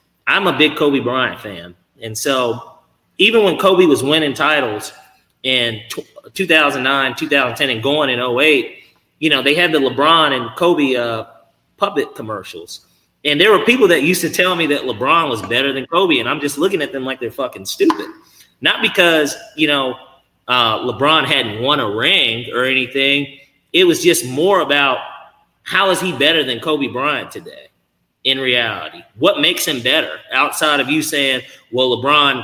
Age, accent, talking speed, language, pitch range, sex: 30-49, American, 175 wpm, English, 120-155 Hz, male